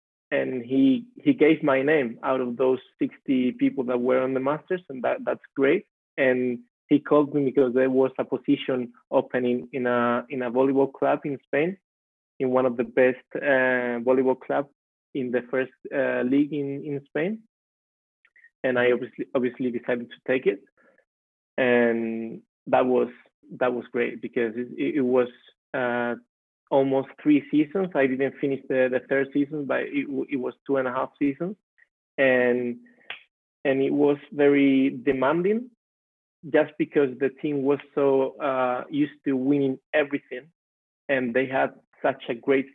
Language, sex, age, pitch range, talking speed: English, male, 20-39, 125-145 Hz, 165 wpm